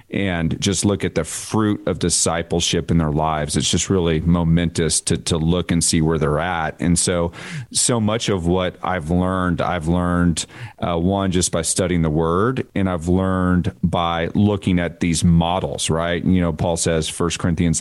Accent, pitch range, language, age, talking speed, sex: American, 85-100 Hz, English, 40-59, 185 wpm, male